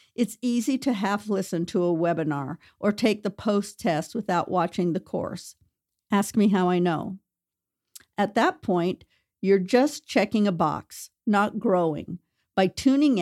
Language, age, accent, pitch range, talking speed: English, 50-69, American, 180-220 Hz, 145 wpm